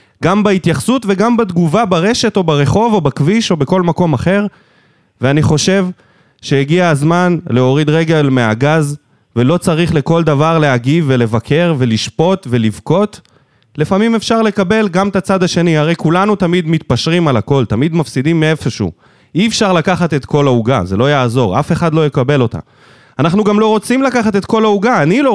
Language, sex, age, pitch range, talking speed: Hebrew, male, 20-39, 145-205 Hz, 160 wpm